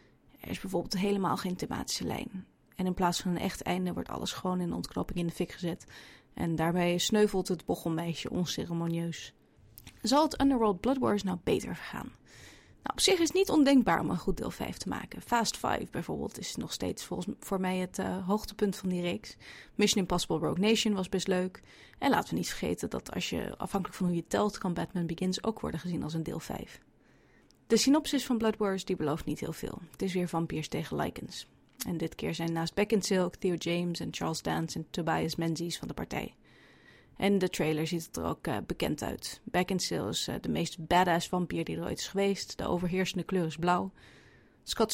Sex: female